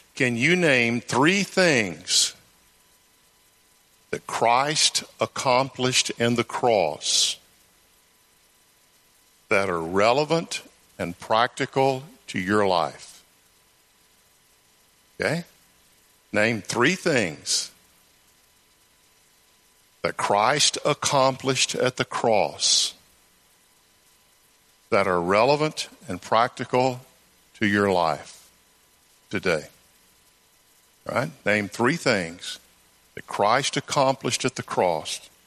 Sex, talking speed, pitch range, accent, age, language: male, 80 wpm, 110-135 Hz, American, 50-69, English